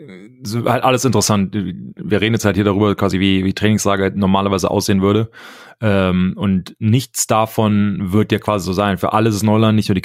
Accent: German